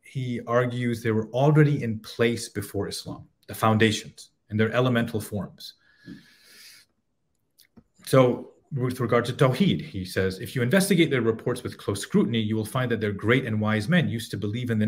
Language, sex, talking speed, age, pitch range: English, male, 180 wpm, 30-49, 110-140 Hz